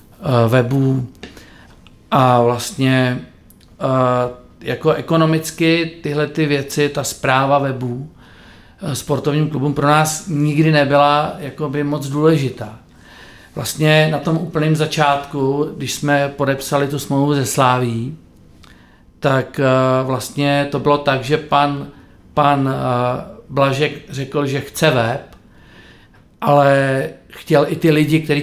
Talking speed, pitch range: 120 wpm, 130-150 Hz